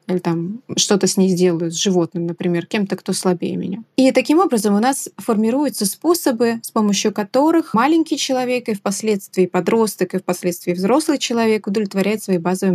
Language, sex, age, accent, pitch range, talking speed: Russian, female, 20-39, native, 185-235 Hz, 165 wpm